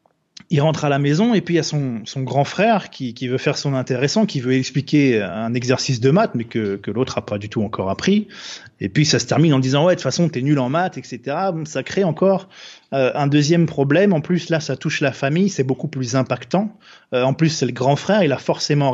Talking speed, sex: 265 wpm, male